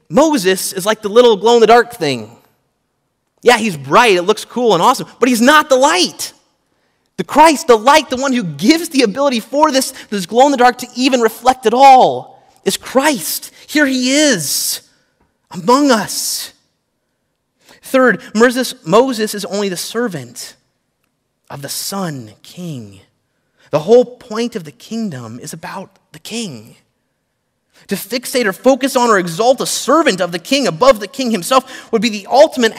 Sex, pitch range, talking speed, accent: male, 170-260 Hz, 155 wpm, American